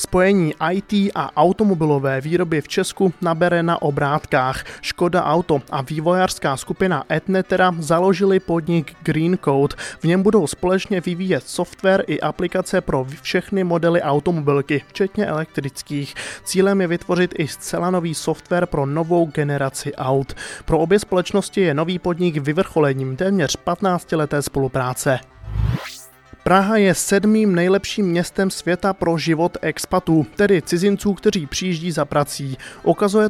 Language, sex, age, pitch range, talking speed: Czech, male, 20-39, 150-185 Hz, 130 wpm